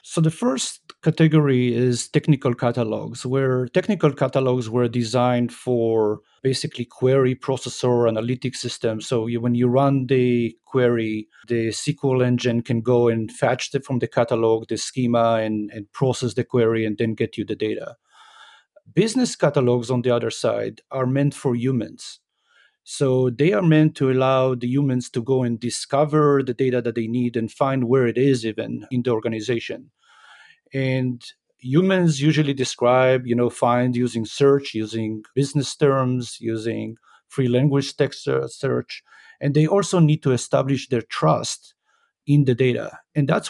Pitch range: 120-140 Hz